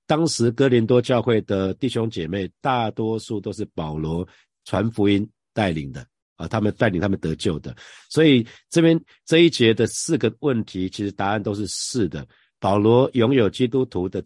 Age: 50-69